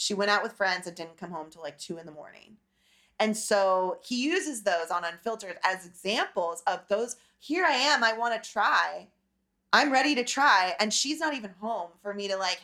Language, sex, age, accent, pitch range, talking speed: English, female, 20-39, American, 195-300 Hz, 215 wpm